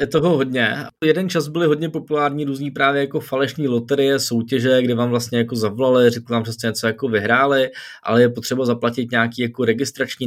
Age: 20-39